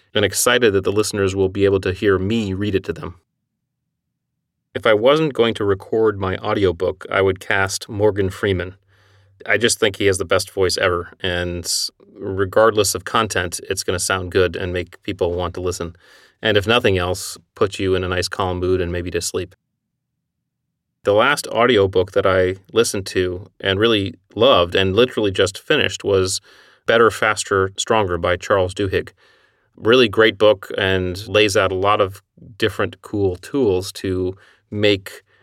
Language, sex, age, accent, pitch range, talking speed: English, male, 30-49, American, 95-105 Hz, 175 wpm